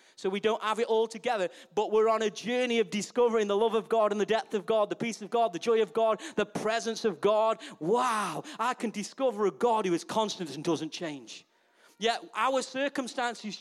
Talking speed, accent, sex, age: 220 wpm, British, male, 40-59